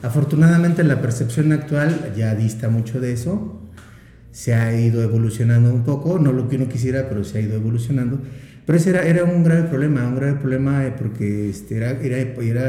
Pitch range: 115-150 Hz